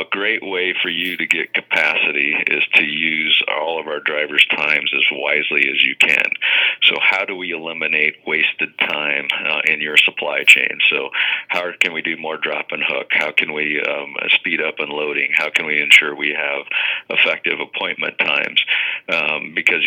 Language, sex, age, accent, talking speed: English, male, 40-59, American, 185 wpm